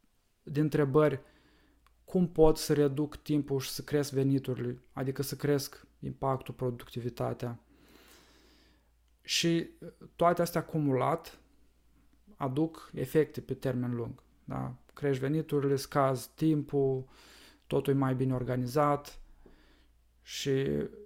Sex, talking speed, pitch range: male, 105 wpm, 130-150 Hz